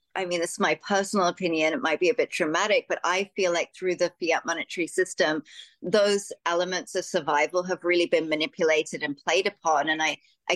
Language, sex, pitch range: English, female, 170-240 Hz